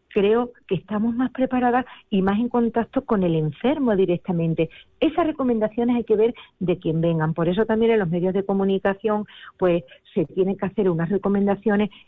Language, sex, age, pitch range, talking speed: Spanish, female, 40-59, 175-225 Hz, 180 wpm